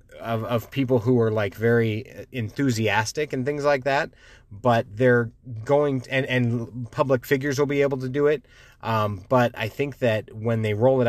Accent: American